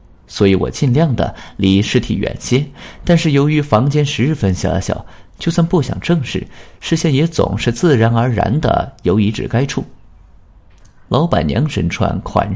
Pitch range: 90-135 Hz